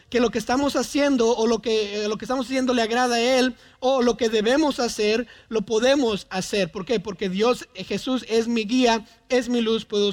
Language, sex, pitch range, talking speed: Spanish, male, 210-245 Hz, 215 wpm